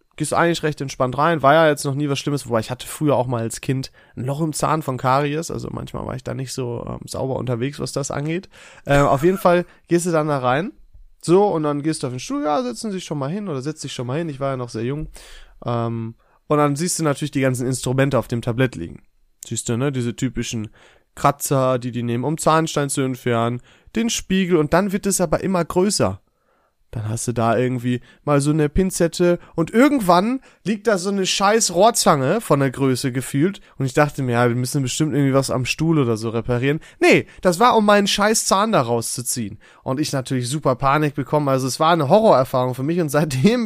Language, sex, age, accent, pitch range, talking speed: German, male, 30-49, German, 125-175 Hz, 230 wpm